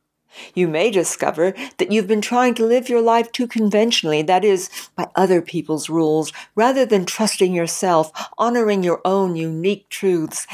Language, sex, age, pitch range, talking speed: English, female, 60-79, 160-210 Hz, 160 wpm